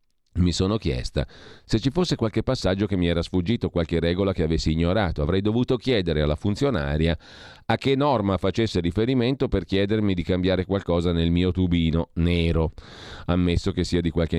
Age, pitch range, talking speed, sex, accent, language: 40-59, 80-105 Hz, 170 wpm, male, native, Italian